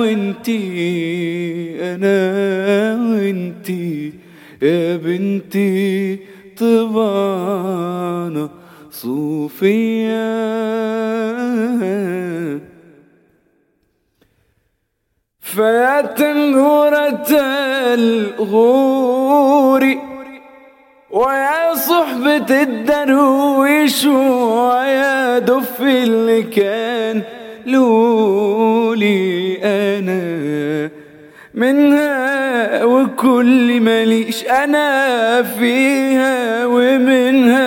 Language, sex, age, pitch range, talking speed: English, male, 30-49, 220-285 Hz, 35 wpm